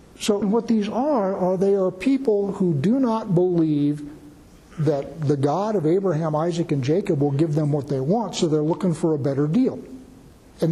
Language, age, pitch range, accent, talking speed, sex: English, 60-79, 155-195 Hz, American, 190 wpm, male